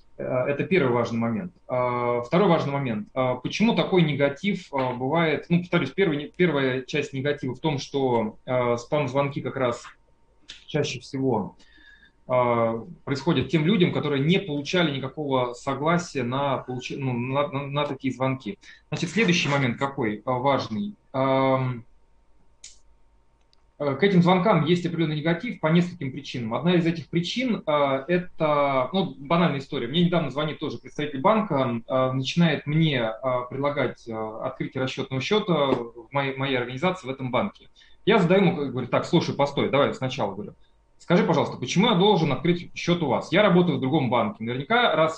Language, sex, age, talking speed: Russian, male, 20-39, 140 wpm